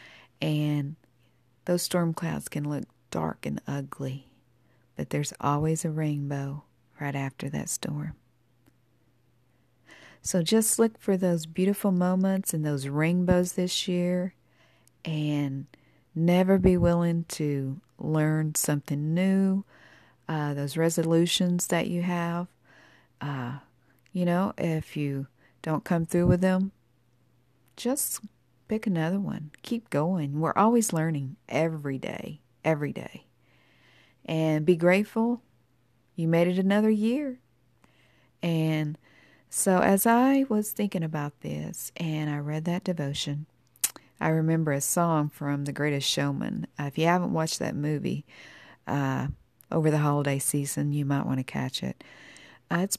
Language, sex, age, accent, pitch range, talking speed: English, female, 50-69, American, 140-175 Hz, 130 wpm